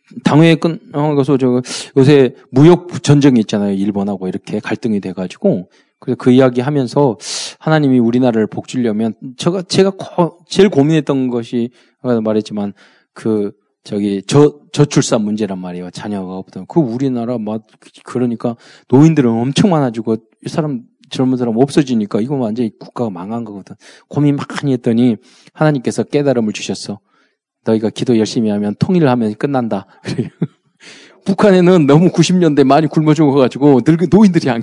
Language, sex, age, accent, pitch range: Korean, male, 20-39, native, 115-175 Hz